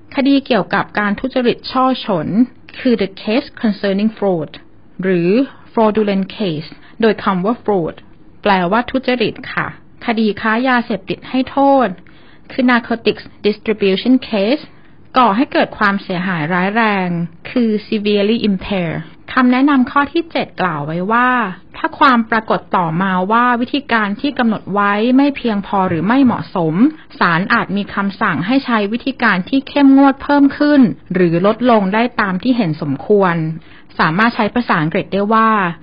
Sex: female